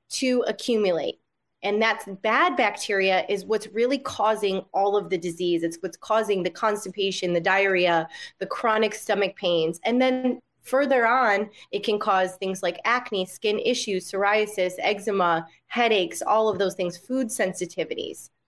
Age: 30-49